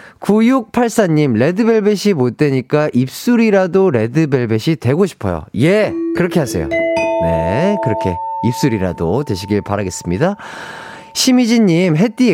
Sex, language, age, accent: male, Korean, 30-49, native